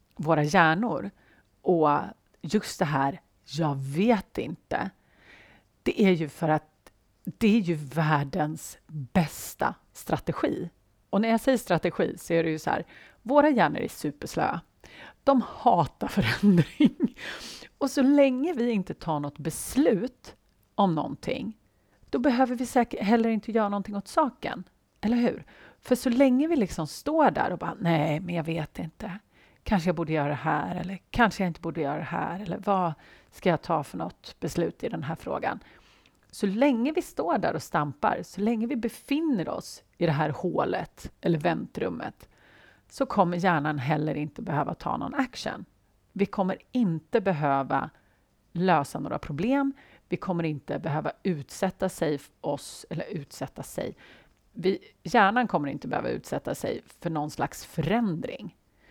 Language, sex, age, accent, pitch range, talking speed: Swedish, female, 40-59, native, 155-230 Hz, 160 wpm